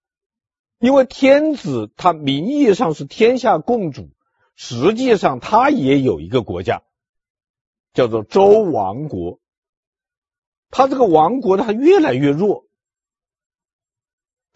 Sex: male